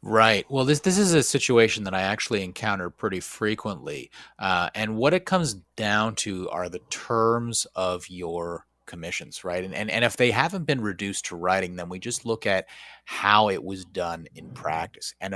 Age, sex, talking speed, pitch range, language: 30-49, male, 190 wpm, 95-115 Hz, English